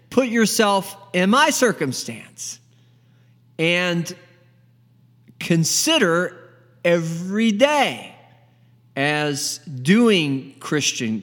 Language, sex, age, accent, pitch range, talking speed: English, male, 40-59, American, 120-185 Hz, 65 wpm